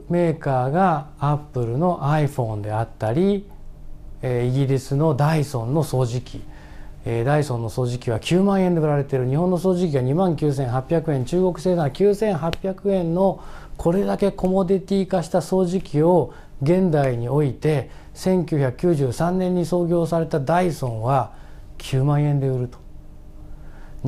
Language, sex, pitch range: Japanese, male, 130-185 Hz